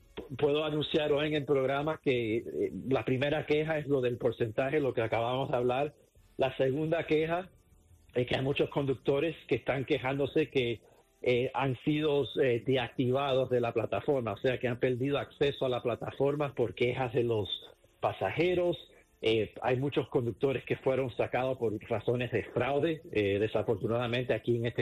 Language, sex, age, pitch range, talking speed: English, male, 50-69, 120-145 Hz, 165 wpm